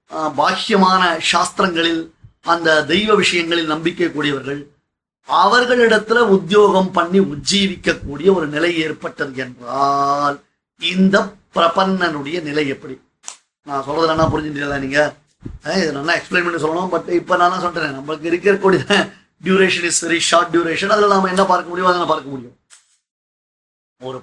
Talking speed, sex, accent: 105 wpm, male, native